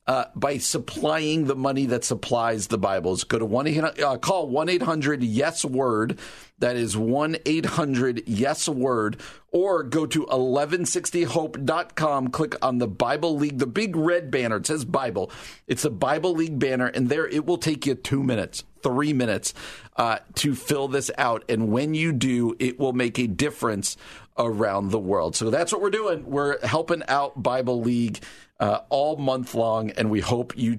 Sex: male